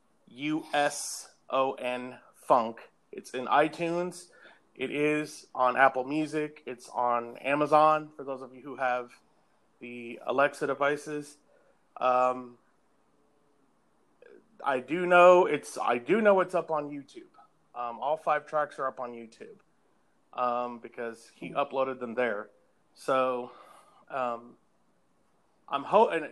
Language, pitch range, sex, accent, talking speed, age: English, 125-150 Hz, male, American, 130 wpm, 30-49